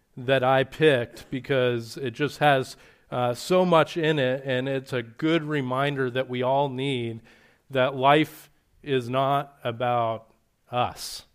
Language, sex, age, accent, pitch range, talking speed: English, male, 40-59, American, 130-165 Hz, 145 wpm